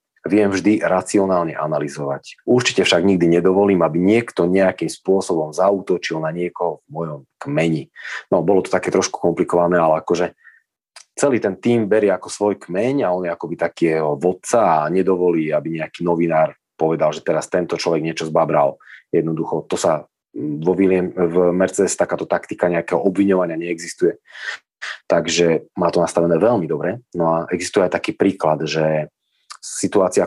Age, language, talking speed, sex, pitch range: 30-49, Slovak, 155 wpm, male, 80-95 Hz